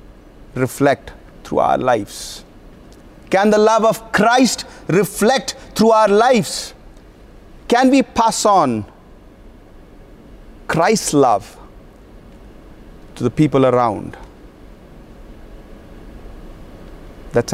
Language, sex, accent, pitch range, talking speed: English, male, Indian, 185-265 Hz, 80 wpm